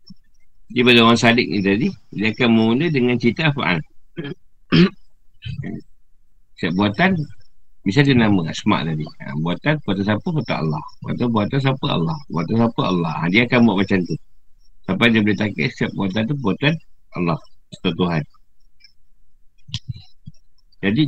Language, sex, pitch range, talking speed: Malay, male, 90-115 Hz, 140 wpm